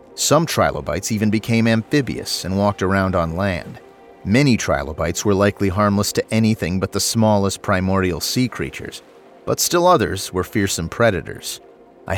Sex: male